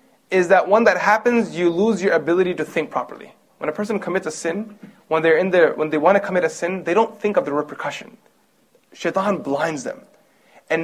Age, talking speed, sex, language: 30-49, 215 wpm, male, English